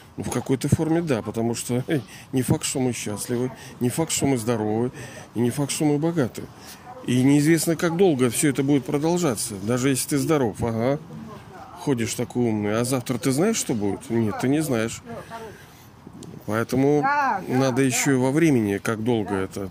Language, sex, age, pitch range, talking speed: Russian, male, 40-59, 115-150 Hz, 180 wpm